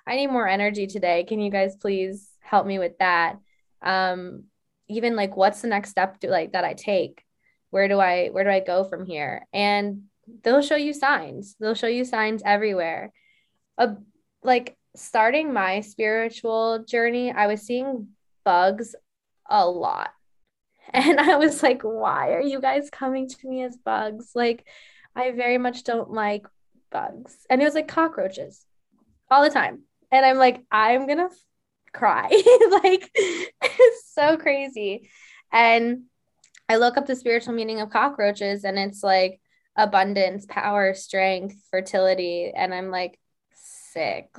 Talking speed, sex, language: 155 wpm, female, English